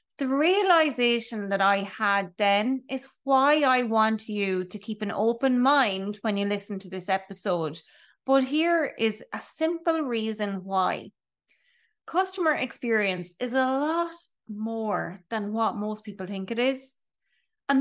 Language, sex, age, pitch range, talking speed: English, female, 30-49, 210-290 Hz, 145 wpm